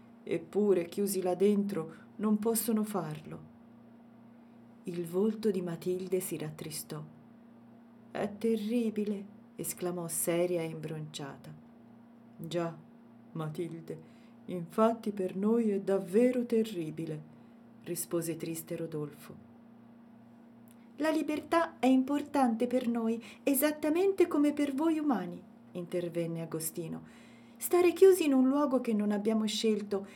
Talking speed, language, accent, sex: 105 wpm, Italian, native, female